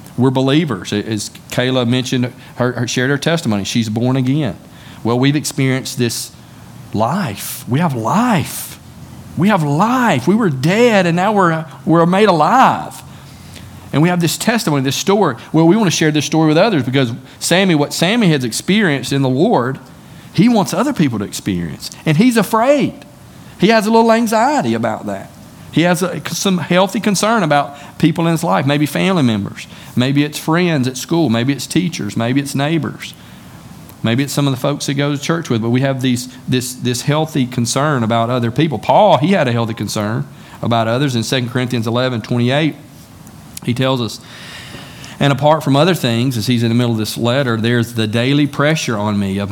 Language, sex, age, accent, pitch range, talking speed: English, male, 40-59, American, 115-155 Hz, 185 wpm